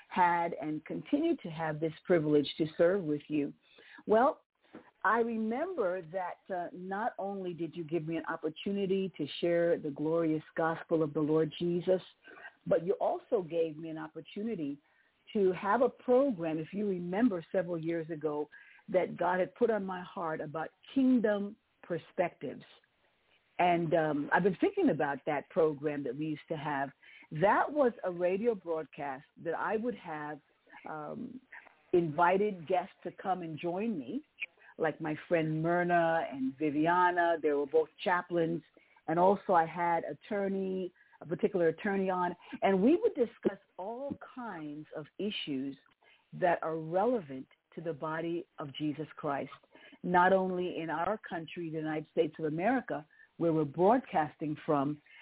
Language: English